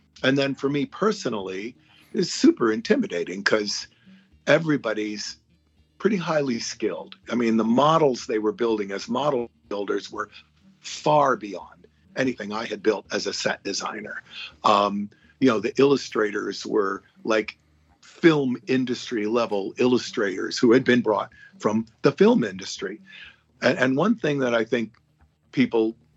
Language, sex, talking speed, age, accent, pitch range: English, male, 140 wpm, 50-69, American, 105-145 Hz